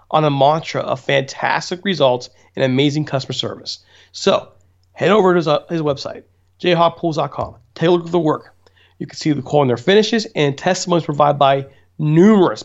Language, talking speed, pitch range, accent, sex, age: English, 180 wpm, 125-175 Hz, American, male, 40-59